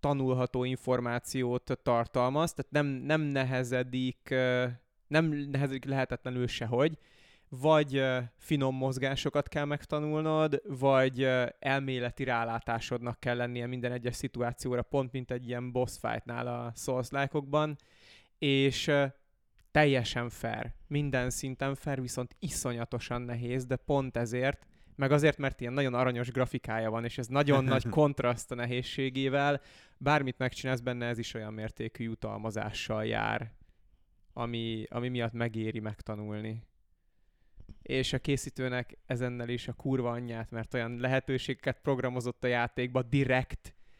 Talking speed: 115 wpm